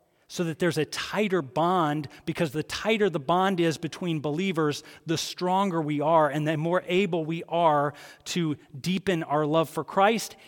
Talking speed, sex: 170 wpm, male